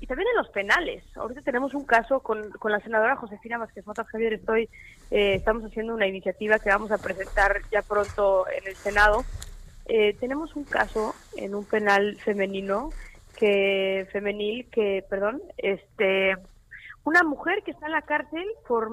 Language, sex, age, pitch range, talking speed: Spanish, female, 20-39, 195-235 Hz, 170 wpm